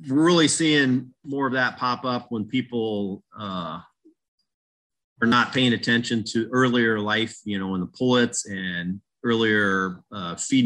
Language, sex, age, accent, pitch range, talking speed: English, male, 40-59, American, 95-120 Hz, 150 wpm